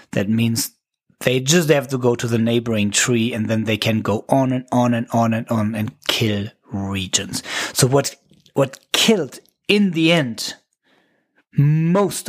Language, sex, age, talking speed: English, male, 30-49, 165 wpm